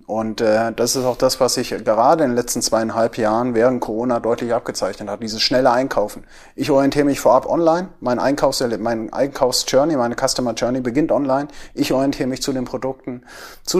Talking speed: 185 wpm